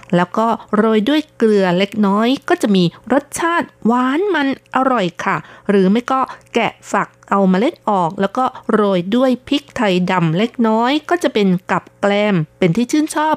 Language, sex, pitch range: Thai, female, 180-235 Hz